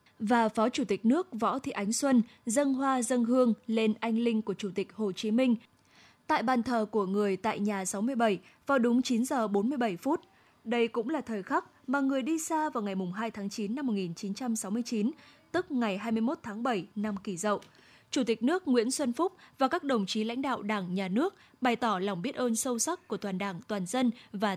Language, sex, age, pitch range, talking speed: Vietnamese, female, 10-29, 210-260 Hz, 215 wpm